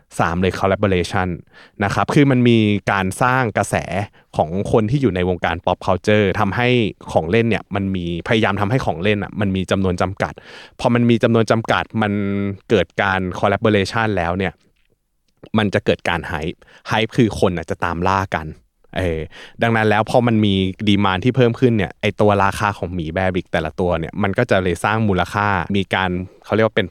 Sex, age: male, 20-39